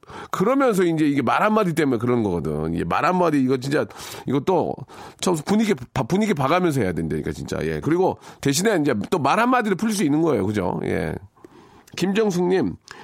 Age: 40-59